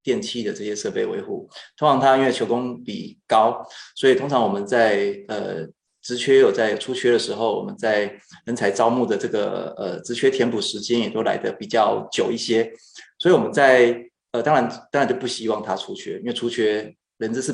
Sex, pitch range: male, 110-180 Hz